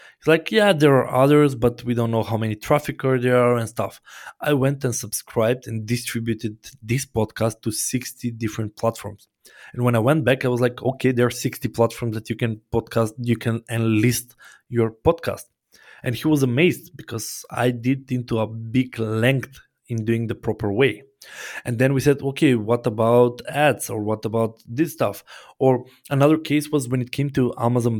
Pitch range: 115-130 Hz